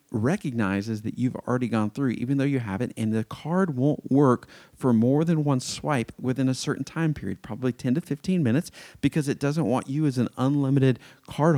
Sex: male